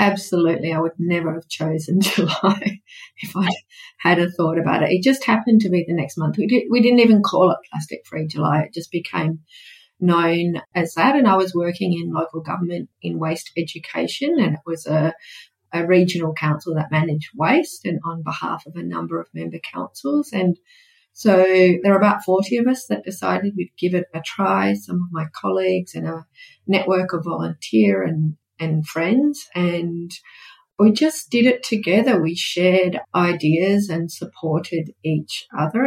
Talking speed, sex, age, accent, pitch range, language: 175 wpm, female, 40-59, Australian, 160-205 Hz, English